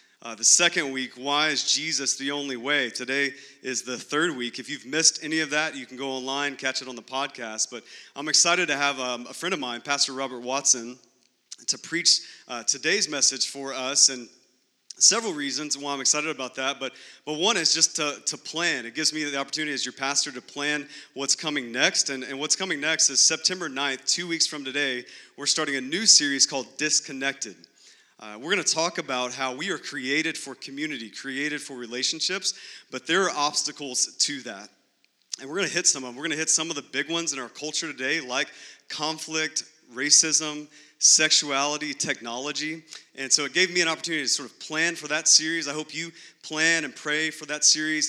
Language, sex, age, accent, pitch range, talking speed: English, male, 30-49, American, 130-155 Hz, 210 wpm